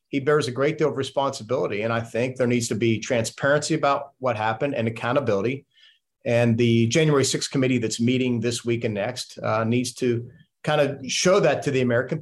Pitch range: 115-140 Hz